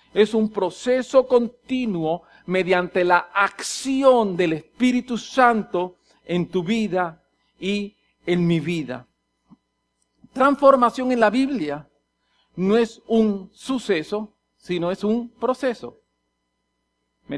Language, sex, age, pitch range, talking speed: English, male, 50-69, 155-250 Hz, 105 wpm